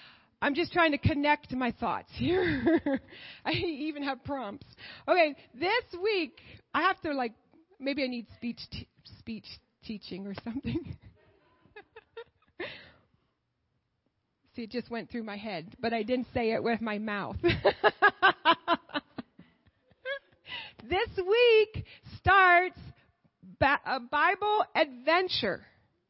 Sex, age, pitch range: female, 40-59, 220-330 Hz